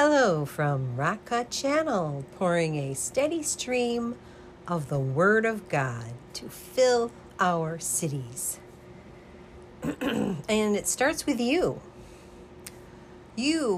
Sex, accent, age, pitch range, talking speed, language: female, American, 50-69, 155-235 Hz, 100 wpm, English